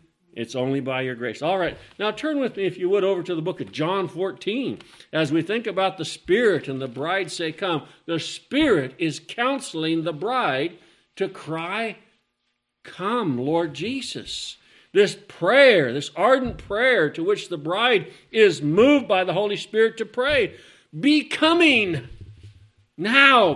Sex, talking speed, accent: male, 160 wpm, American